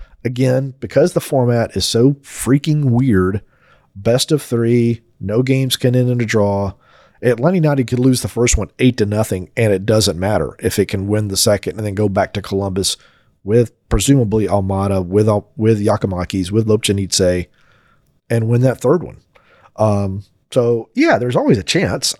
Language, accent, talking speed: English, American, 175 wpm